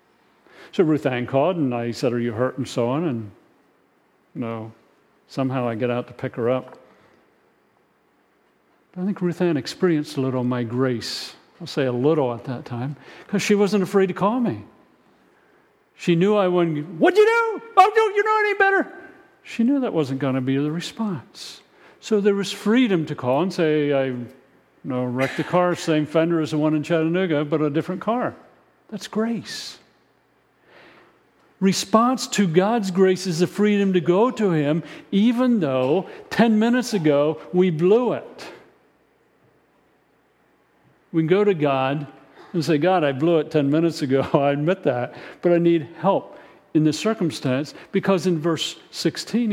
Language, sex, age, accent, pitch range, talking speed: English, male, 50-69, American, 135-195 Hz, 175 wpm